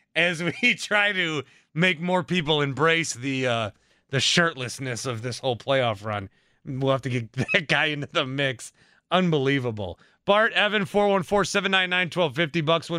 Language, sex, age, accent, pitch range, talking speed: English, male, 30-49, American, 150-195 Hz, 150 wpm